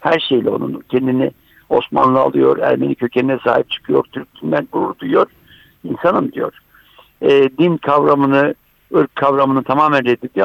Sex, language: male, Turkish